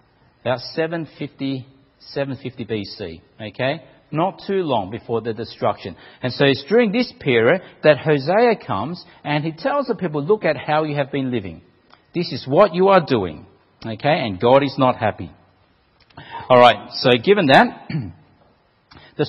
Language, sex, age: English, male, 50-69